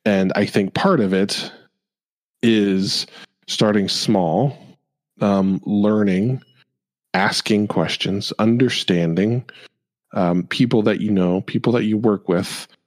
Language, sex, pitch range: English, male, 90-105 Hz